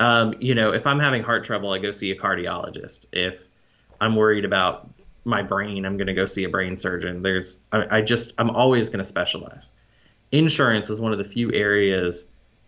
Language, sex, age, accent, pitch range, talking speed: English, male, 20-39, American, 105-155 Hz, 195 wpm